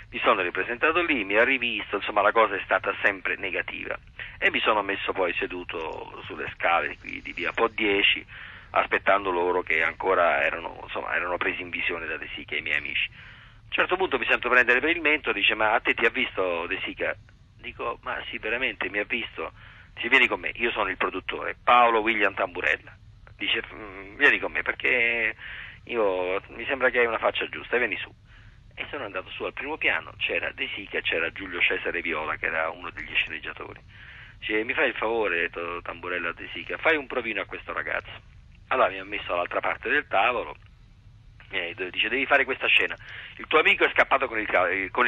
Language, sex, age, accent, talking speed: Italian, male, 40-59, native, 200 wpm